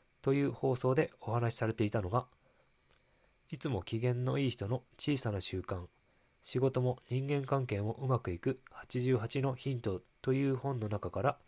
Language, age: Japanese, 20-39